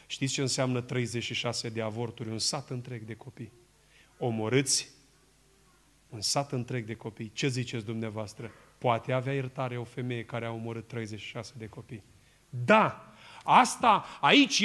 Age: 30-49